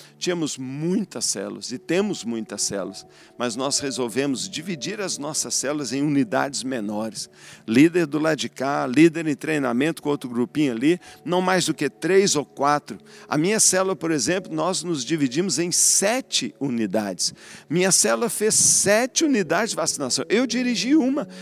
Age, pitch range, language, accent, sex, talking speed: 50-69, 135-195 Hz, Portuguese, Brazilian, male, 160 wpm